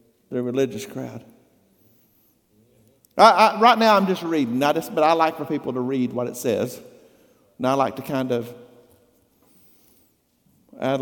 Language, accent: English, American